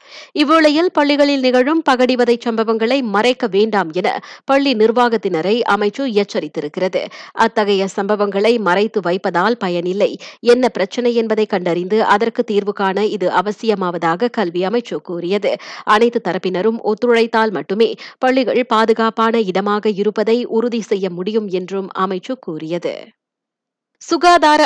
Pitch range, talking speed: 200-250 Hz, 100 wpm